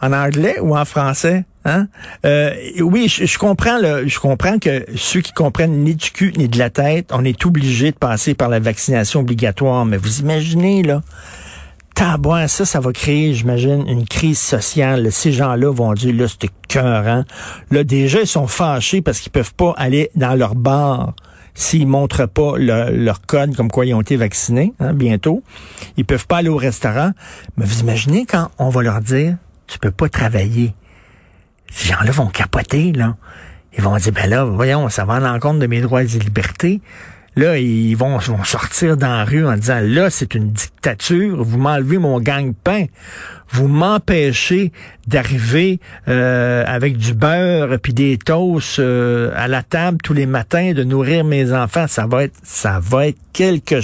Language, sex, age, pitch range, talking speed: French, male, 50-69, 120-155 Hz, 190 wpm